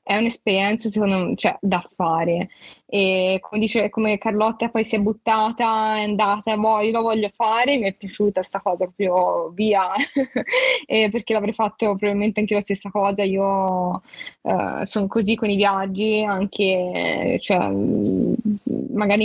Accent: native